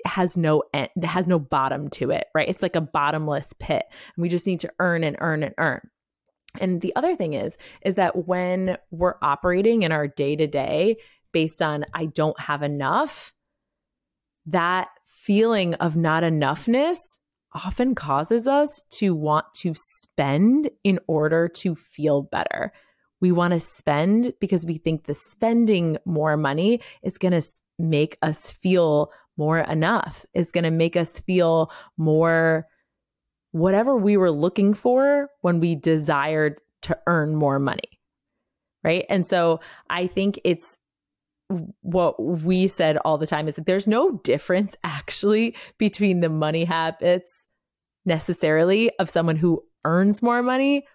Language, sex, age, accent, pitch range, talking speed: English, female, 20-39, American, 160-195 Hz, 150 wpm